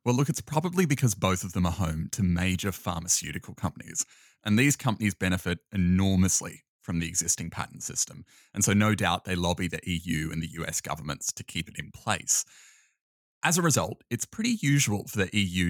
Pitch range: 90-130 Hz